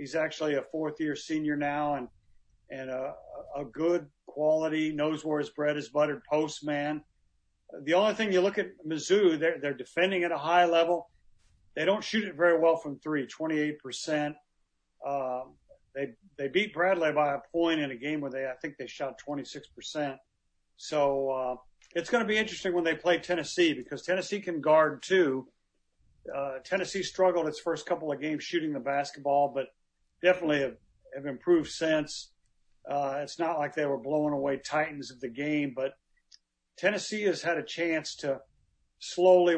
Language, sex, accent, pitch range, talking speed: English, male, American, 135-165 Hz, 170 wpm